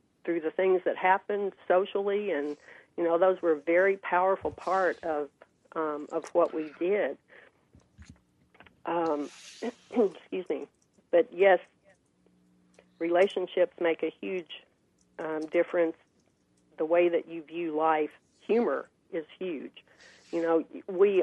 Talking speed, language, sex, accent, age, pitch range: 125 wpm, English, female, American, 40-59, 155-180 Hz